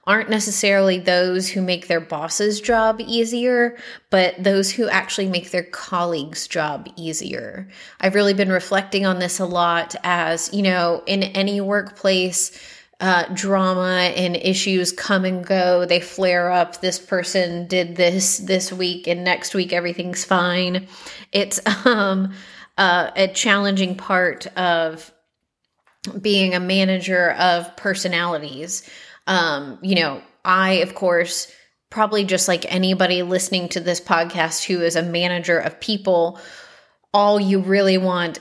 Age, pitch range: 20-39, 175-195 Hz